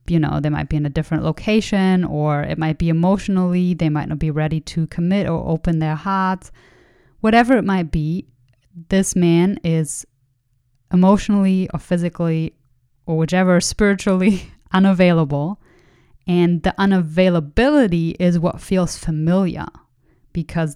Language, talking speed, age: English, 135 wpm, 20-39